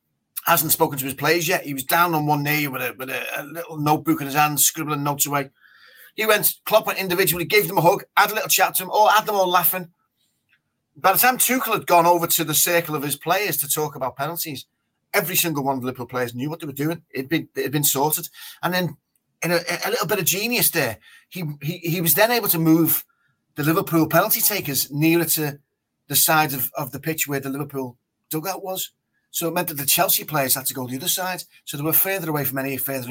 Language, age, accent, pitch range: English, 30-49, British, 150-200 Hz